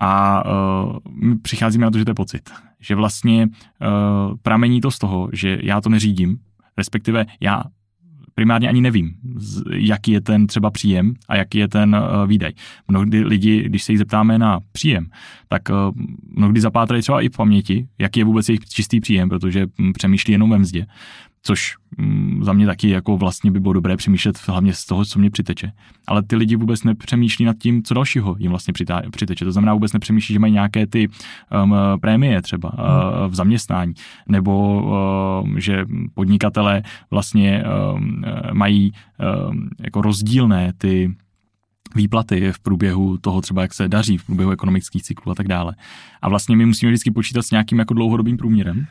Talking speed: 170 wpm